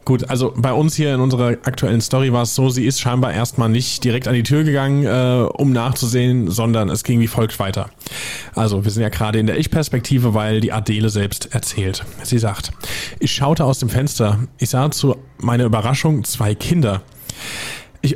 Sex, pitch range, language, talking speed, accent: male, 115-140 Hz, German, 195 wpm, German